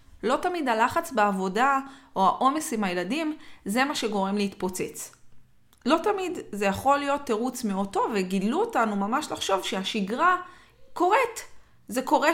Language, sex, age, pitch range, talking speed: Hebrew, female, 20-39, 195-280 Hz, 130 wpm